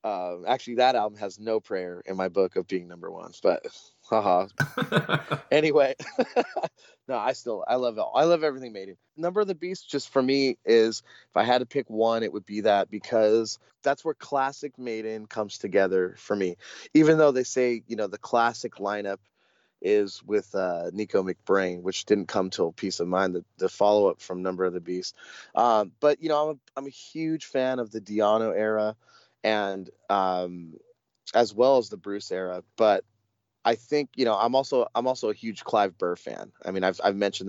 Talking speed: 205 wpm